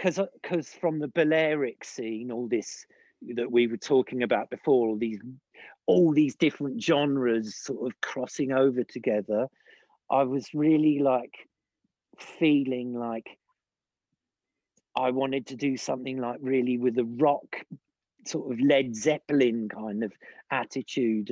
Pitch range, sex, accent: 125-160 Hz, male, British